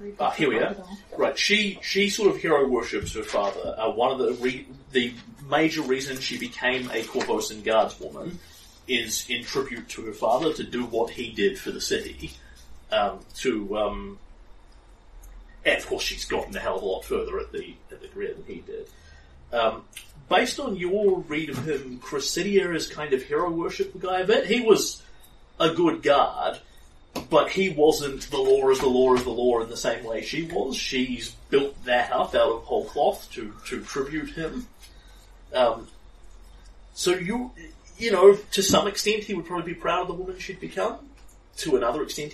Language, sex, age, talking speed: English, male, 30-49, 190 wpm